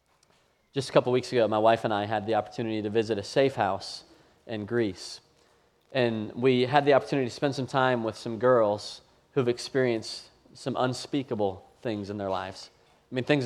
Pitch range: 110-130 Hz